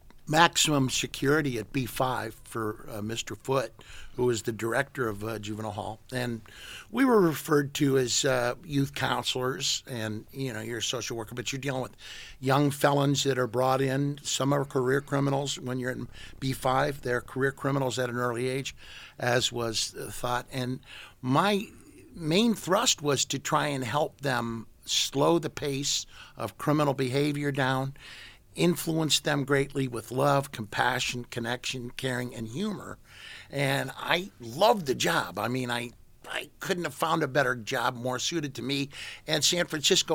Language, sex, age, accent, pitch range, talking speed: English, male, 60-79, American, 120-145 Hz, 165 wpm